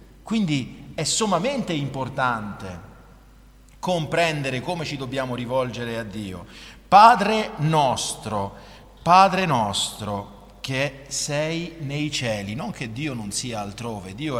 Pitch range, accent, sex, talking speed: 120-185 Hz, native, male, 110 wpm